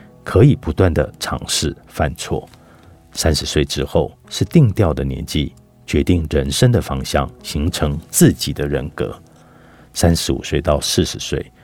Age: 50-69